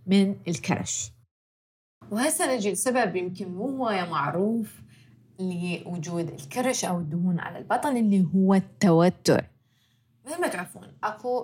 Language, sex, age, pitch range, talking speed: Arabic, female, 20-39, 165-220 Hz, 115 wpm